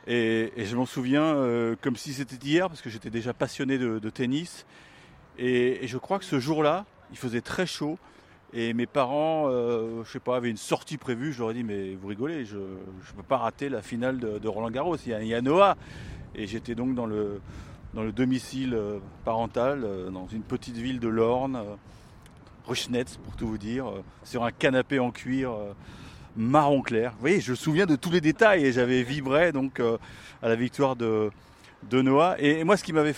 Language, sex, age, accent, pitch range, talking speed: French, male, 30-49, French, 115-150 Hz, 220 wpm